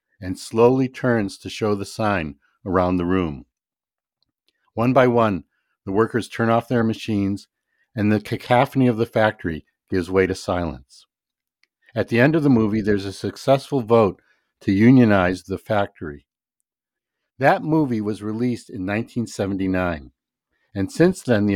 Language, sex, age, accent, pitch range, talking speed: English, male, 60-79, American, 100-125 Hz, 150 wpm